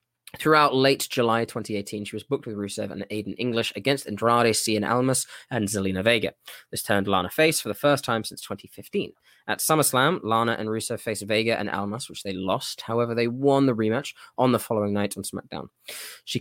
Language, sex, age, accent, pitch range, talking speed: English, male, 10-29, British, 105-125 Hz, 195 wpm